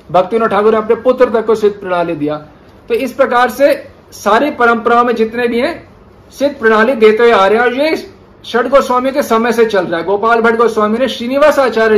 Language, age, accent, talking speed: Hindi, 50-69, native, 220 wpm